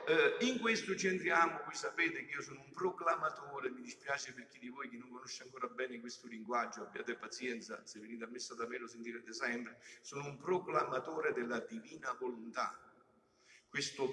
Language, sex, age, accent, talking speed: Italian, male, 50-69, native, 185 wpm